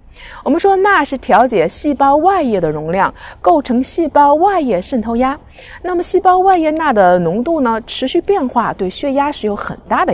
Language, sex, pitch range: Chinese, female, 205-310 Hz